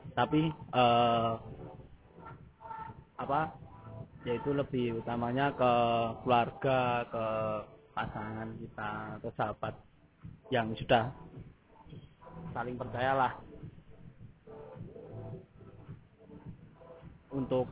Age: 20-39